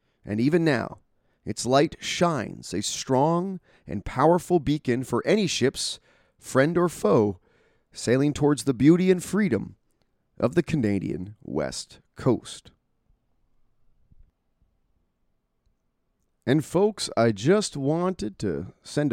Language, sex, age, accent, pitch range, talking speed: English, male, 30-49, American, 105-145 Hz, 110 wpm